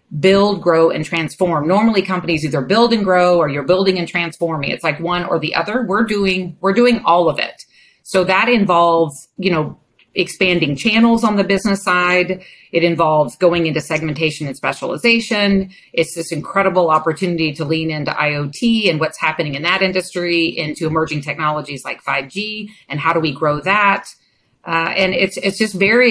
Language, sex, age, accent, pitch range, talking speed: English, female, 40-59, American, 160-195 Hz, 175 wpm